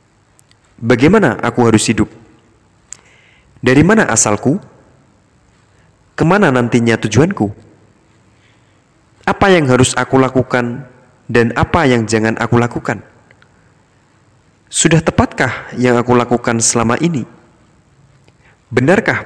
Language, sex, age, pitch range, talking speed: Indonesian, male, 30-49, 105-125 Hz, 90 wpm